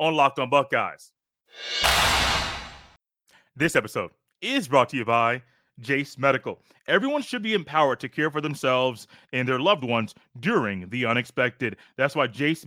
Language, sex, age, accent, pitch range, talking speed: English, male, 30-49, American, 135-185 Hz, 150 wpm